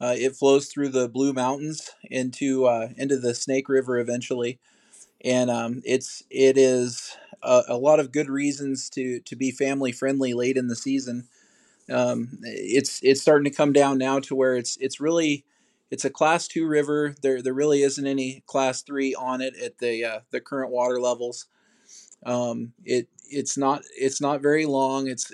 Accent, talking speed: American, 180 wpm